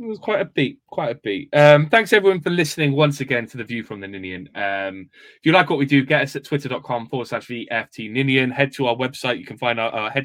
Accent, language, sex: British, English, male